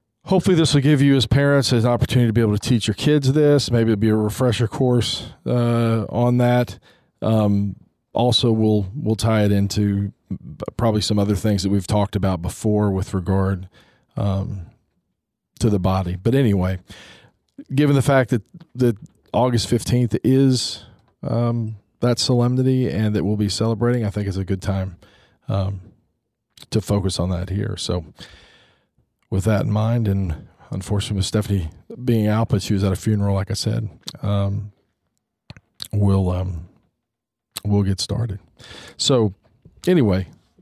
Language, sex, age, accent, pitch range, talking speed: English, male, 40-59, American, 100-125 Hz, 155 wpm